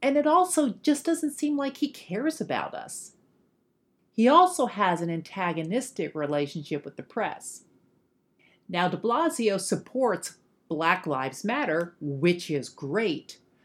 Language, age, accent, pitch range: Japanese, 50-69, American, 170-255 Hz